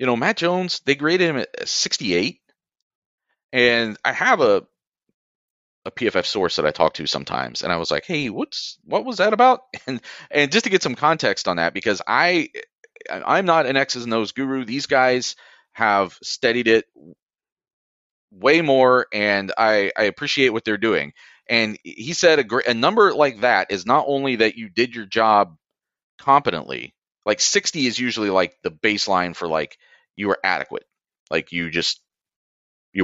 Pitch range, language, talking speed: 105-155 Hz, English, 175 wpm